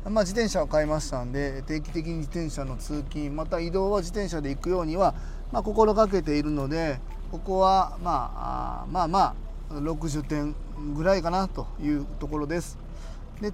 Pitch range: 140-195 Hz